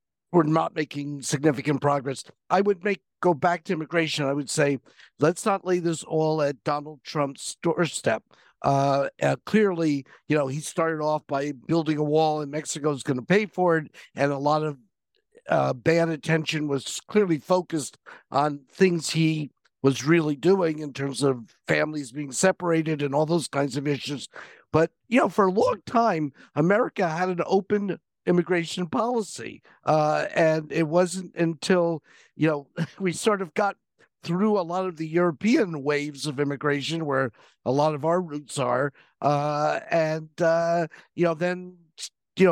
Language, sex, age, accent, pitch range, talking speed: English, male, 50-69, American, 145-175 Hz, 170 wpm